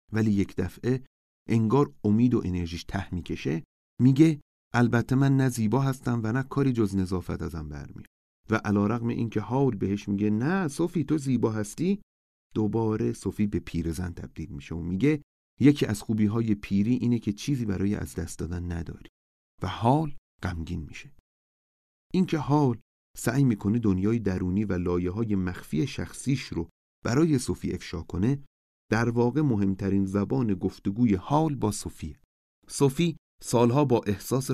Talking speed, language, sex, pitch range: 145 wpm, Persian, male, 90-125 Hz